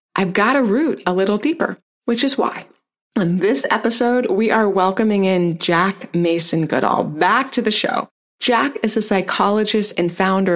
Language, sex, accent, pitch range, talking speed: English, female, American, 175-230 Hz, 170 wpm